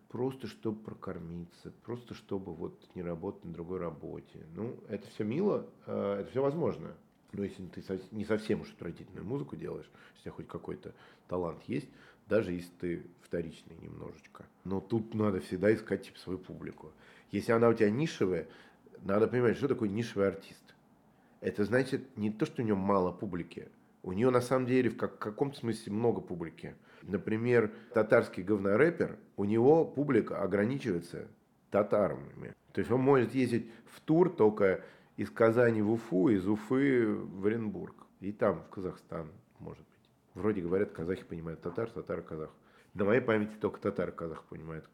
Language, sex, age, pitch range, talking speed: Russian, male, 40-59, 95-115 Hz, 160 wpm